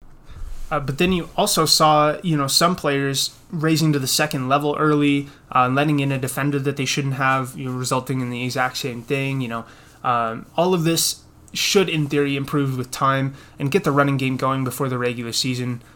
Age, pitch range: 20-39, 125-145 Hz